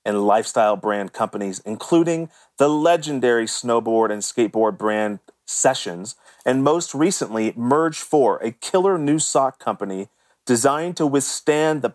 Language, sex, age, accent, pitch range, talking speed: English, male, 40-59, American, 115-140 Hz, 130 wpm